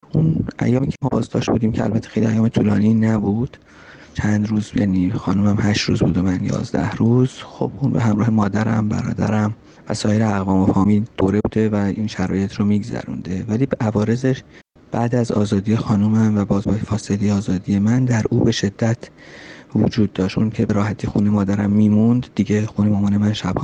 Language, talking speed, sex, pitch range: Persian, 175 wpm, male, 100-115 Hz